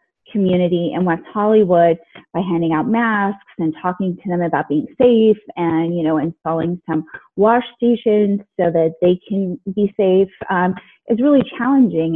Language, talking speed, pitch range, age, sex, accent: English, 160 wpm, 175-215 Hz, 30-49, female, American